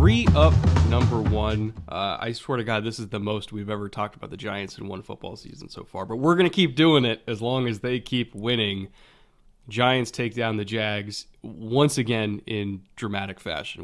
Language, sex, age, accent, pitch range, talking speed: English, male, 20-39, American, 100-125 Hz, 210 wpm